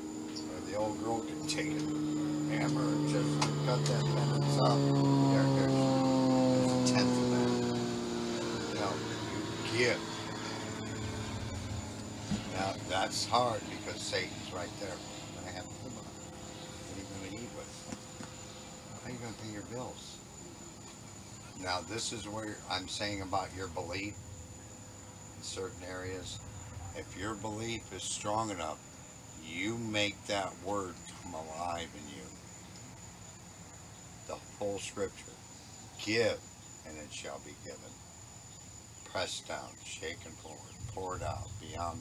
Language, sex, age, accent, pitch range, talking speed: English, male, 60-79, American, 95-110 Hz, 125 wpm